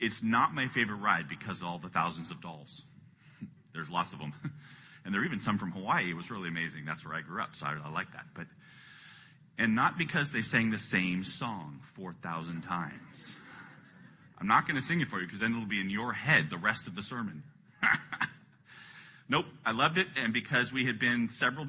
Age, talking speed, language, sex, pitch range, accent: 40-59, 220 wpm, English, male, 105-145 Hz, American